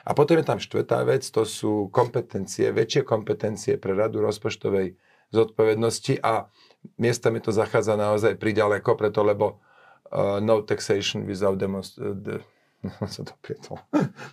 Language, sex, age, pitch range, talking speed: Slovak, male, 40-59, 100-115 Hz, 130 wpm